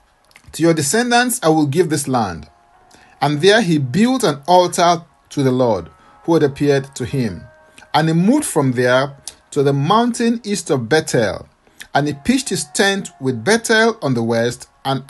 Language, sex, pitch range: English, male, 125-190 Hz